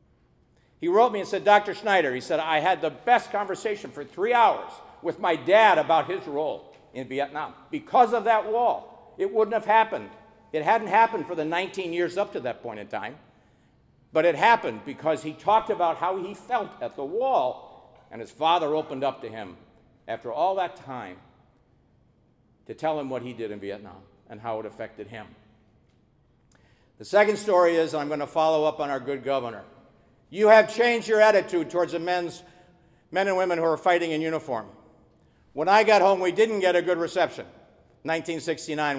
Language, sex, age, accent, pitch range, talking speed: English, male, 50-69, American, 145-195 Hz, 190 wpm